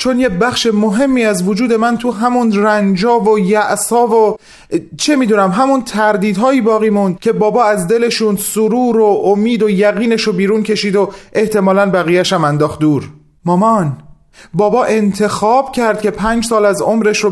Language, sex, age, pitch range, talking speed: Persian, male, 30-49, 195-235 Hz, 160 wpm